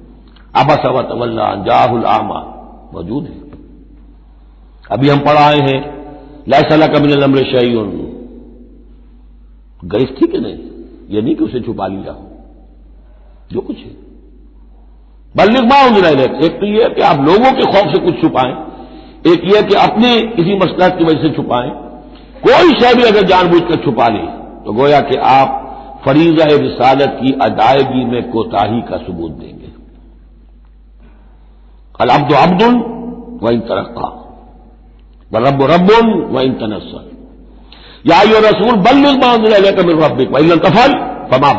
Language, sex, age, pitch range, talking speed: Hindi, male, 60-79, 130-220 Hz, 125 wpm